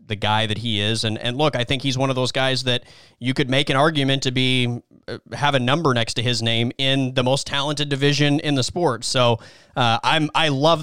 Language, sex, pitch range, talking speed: English, male, 125-155 Hz, 240 wpm